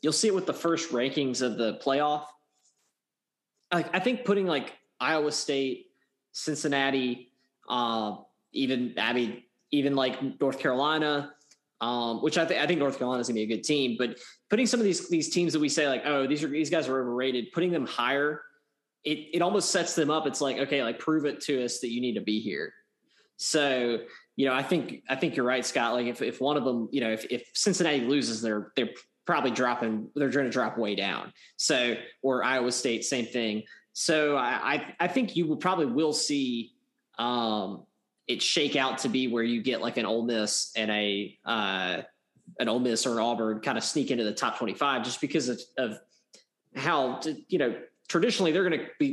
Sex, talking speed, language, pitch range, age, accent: male, 210 wpm, English, 120-150 Hz, 20-39, American